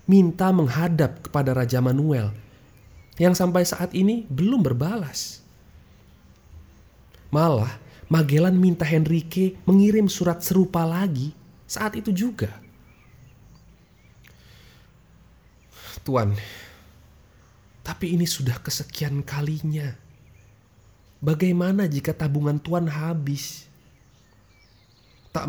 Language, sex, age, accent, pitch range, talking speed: Indonesian, male, 30-49, native, 105-150 Hz, 80 wpm